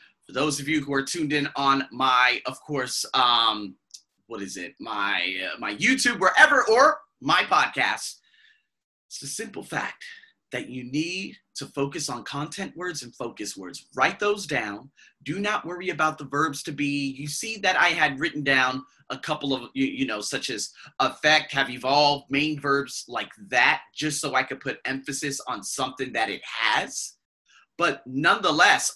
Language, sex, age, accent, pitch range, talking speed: English, male, 30-49, American, 140-205 Hz, 175 wpm